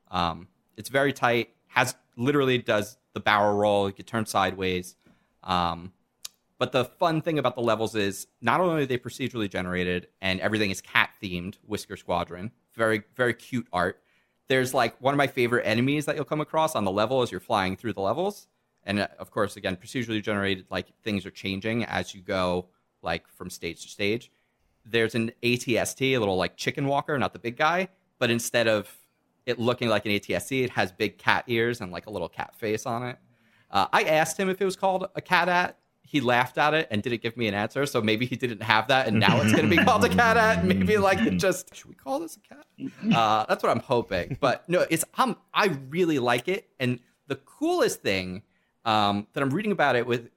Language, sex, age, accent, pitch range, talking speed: English, male, 30-49, American, 105-140 Hz, 215 wpm